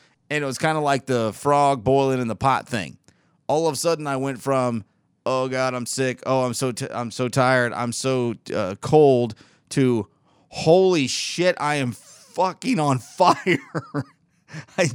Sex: male